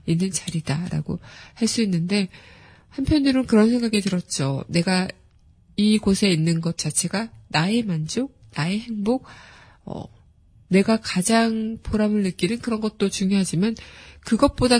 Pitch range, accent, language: 170-215 Hz, native, Korean